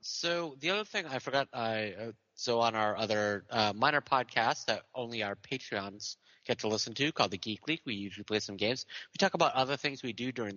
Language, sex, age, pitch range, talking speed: English, male, 30-49, 115-140 Hz, 220 wpm